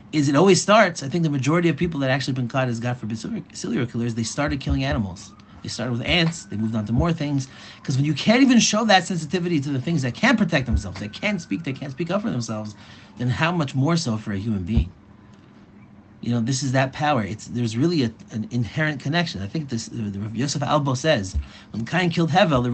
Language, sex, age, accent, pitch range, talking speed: English, male, 30-49, American, 105-155 Hz, 240 wpm